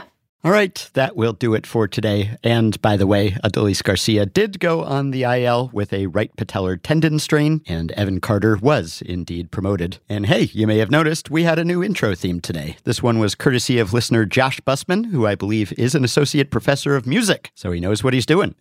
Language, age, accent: English, 50-69, American